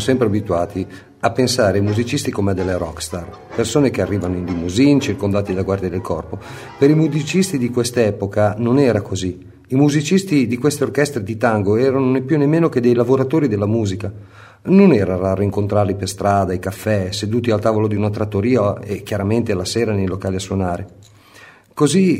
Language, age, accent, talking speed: Italian, 40-59, native, 185 wpm